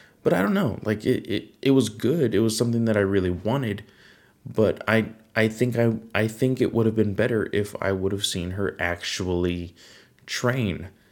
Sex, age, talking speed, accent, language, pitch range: male, 20-39, 200 wpm, American, English, 95-115 Hz